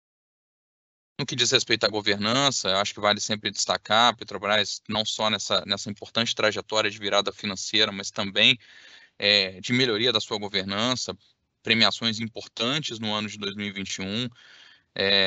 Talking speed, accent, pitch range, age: 135 wpm, Brazilian, 100-115 Hz, 20-39